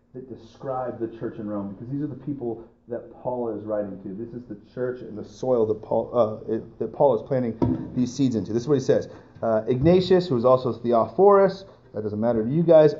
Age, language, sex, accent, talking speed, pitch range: 30-49, English, male, American, 235 wpm, 115-165 Hz